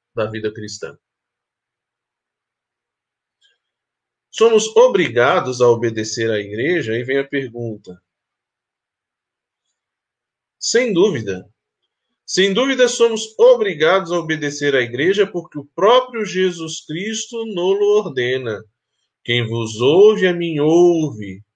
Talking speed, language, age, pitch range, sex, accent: 105 wpm, Portuguese, 20-39, 135-205 Hz, male, Brazilian